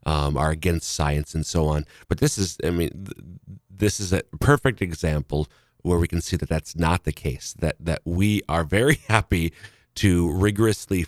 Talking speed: 185 wpm